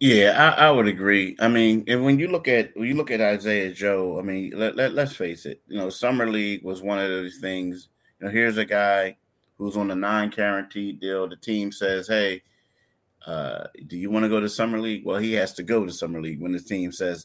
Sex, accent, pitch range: male, American, 100-120 Hz